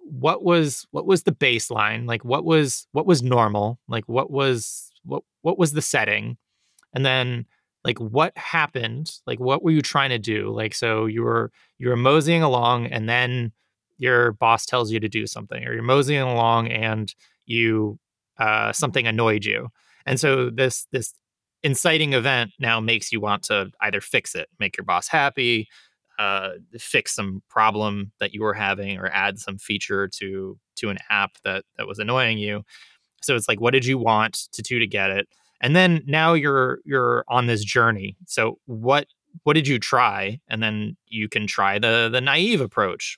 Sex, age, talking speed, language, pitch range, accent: male, 20-39, 185 wpm, English, 110-135 Hz, American